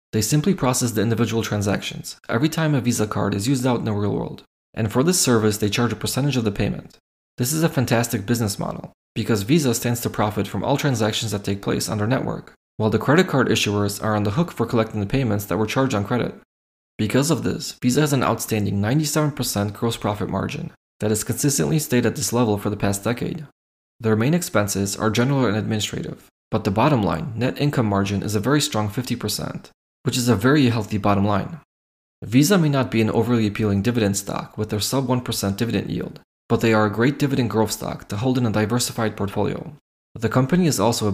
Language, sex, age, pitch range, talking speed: English, male, 20-39, 105-130 Hz, 215 wpm